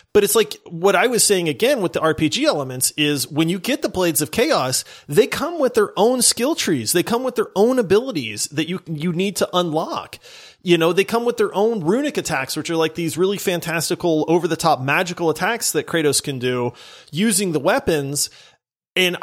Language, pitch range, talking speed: English, 150-205 Hz, 210 wpm